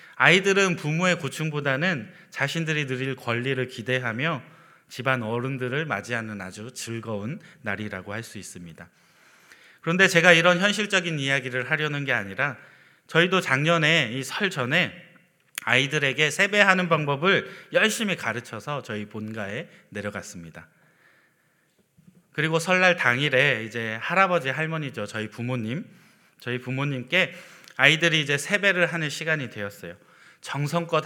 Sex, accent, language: male, native, Korean